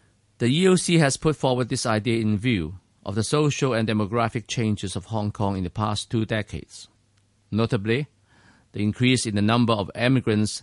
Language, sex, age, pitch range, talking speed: English, male, 50-69, 105-125 Hz, 175 wpm